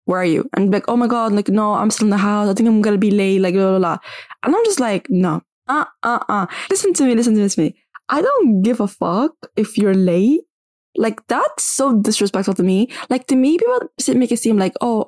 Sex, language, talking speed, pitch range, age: female, English, 265 wpm, 185-245 Hz, 10-29